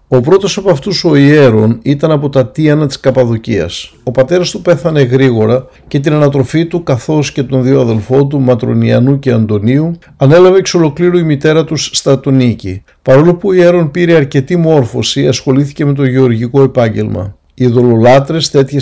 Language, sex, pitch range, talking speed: Greek, male, 130-155 Hz, 165 wpm